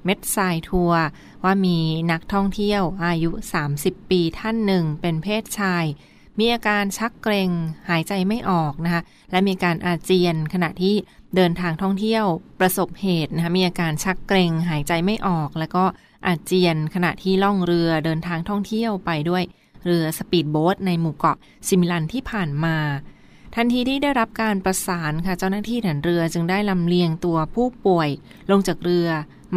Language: Thai